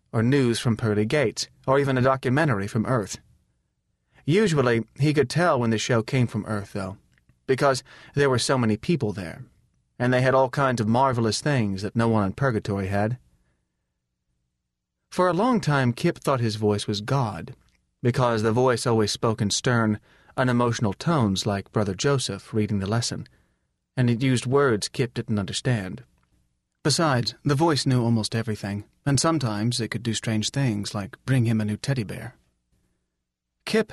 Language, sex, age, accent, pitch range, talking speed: English, male, 30-49, American, 100-130 Hz, 170 wpm